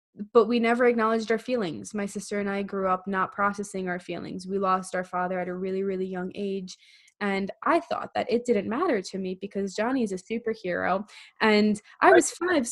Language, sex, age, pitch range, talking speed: English, female, 20-39, 200-235 Hz, 210 wpm